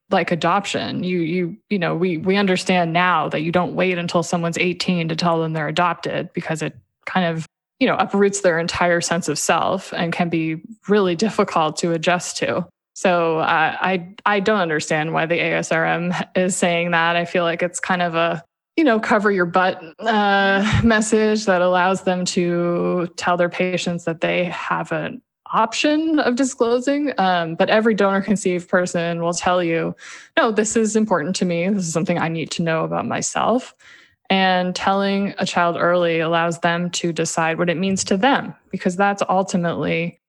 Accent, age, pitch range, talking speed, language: American, 20-39, 170-190 Hz, 180 wpm, English